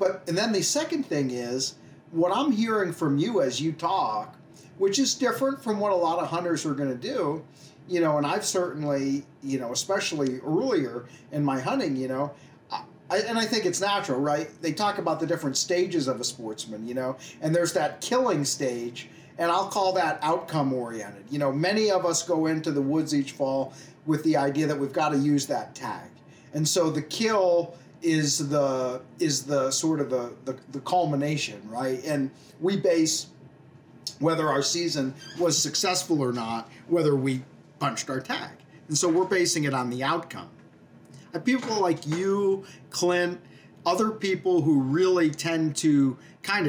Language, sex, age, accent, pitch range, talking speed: English, male, 40-59, American, 135-175 Hz, 180 wpm